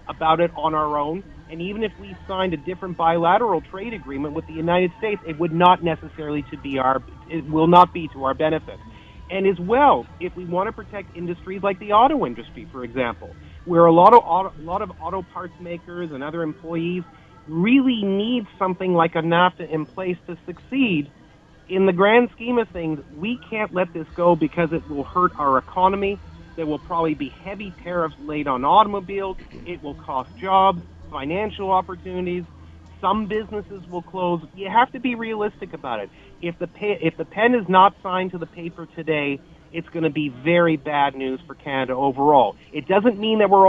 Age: 40-59